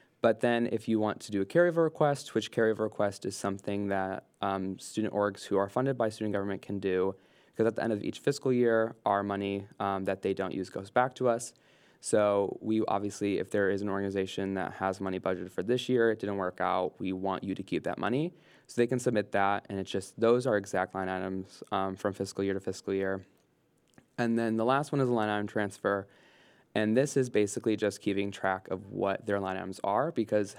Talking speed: 230 wpm